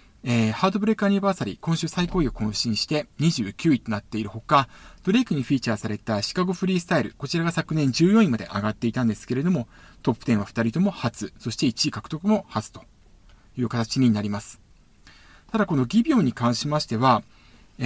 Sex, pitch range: male, 110-170 Hz